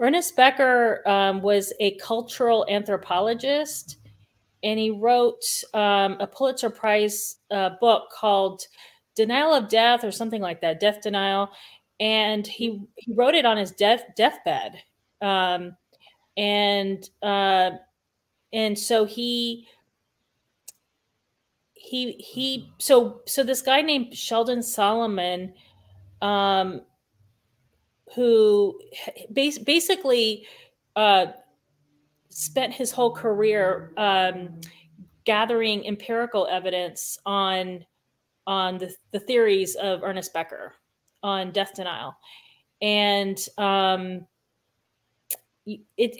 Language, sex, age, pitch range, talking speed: English, female, 30-49, 195-250 Hz, 100 wpm